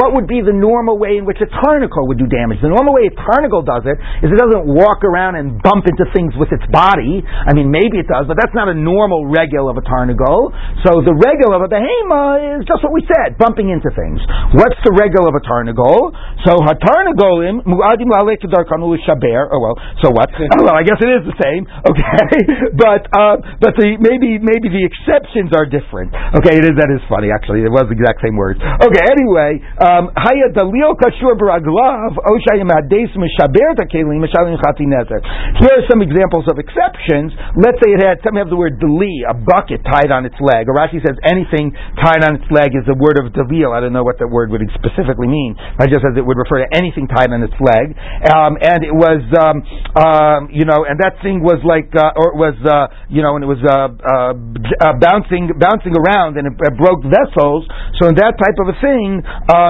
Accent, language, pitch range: American, English, 140-205 Hz